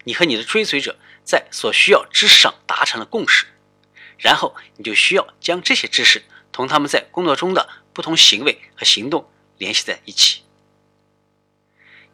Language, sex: Chinese, male